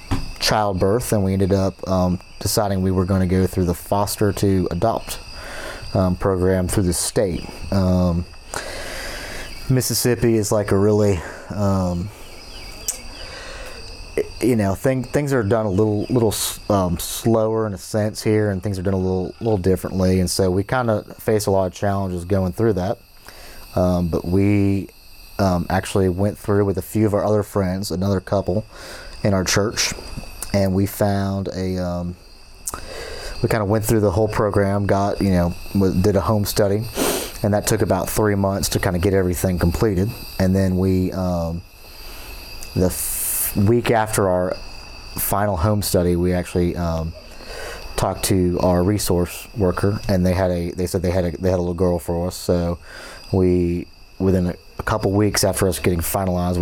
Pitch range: 90-105 Hz